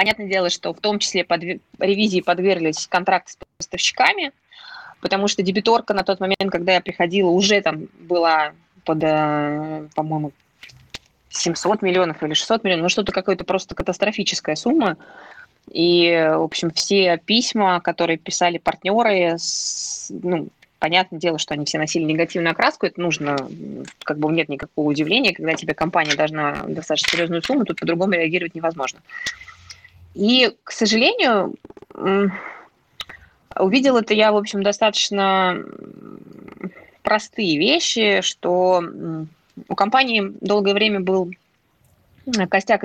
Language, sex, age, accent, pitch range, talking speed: Russian, female, 20-39, native, 165-200 Hz, 125 wpm